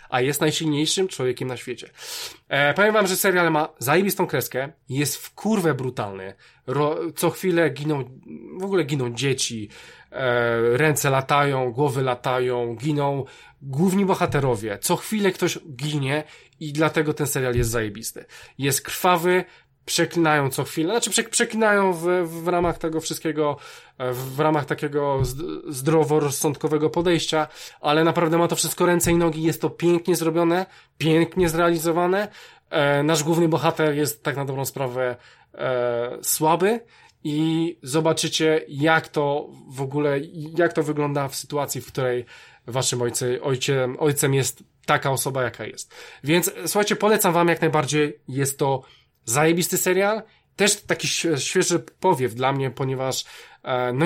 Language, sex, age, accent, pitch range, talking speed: Polish, male, 20-39, native, 135-170 Hz, 135 wpm